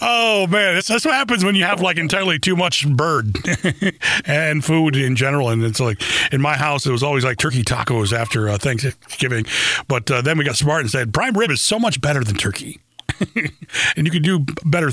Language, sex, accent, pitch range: English, male, American, 130-175 Hz